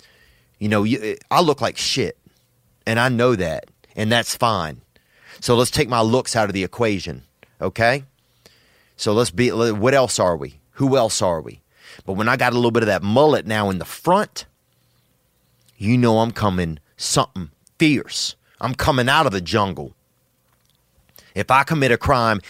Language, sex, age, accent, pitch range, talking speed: English, male, 30-49, American, 90-120 Hz, 175 wpm